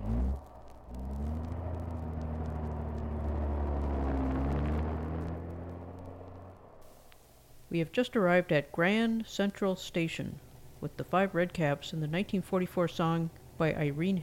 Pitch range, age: 145-195 Hz, 50-69